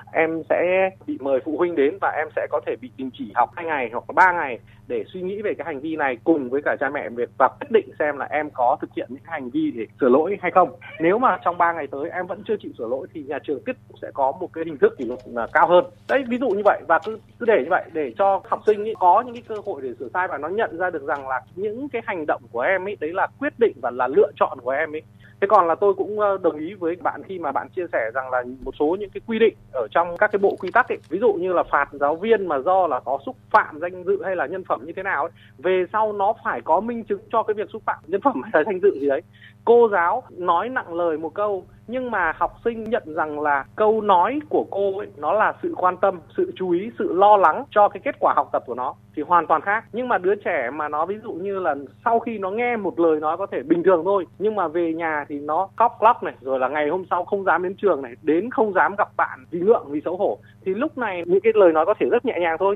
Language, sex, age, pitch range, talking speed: Vietnamese, male, 20-39, 170-240 Hz, 295 wpm